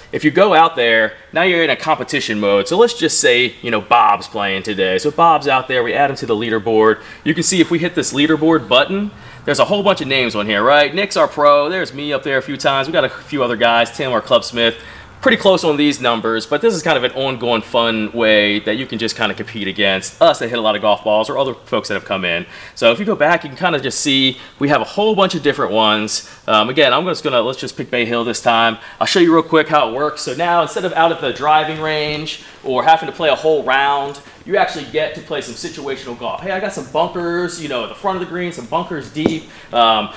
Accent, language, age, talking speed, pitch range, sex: American, English, 30-49, 275 wpm, 120-170 Hz, male